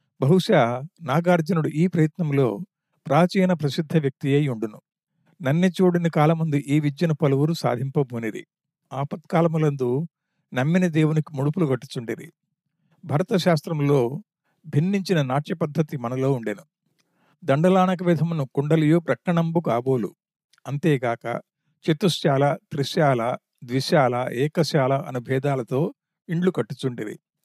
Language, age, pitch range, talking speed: Telugu, 50-69, 135-170 Hz, 85 wpm